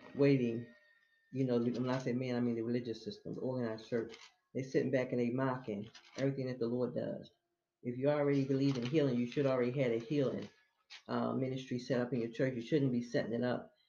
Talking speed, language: 215 wpm, English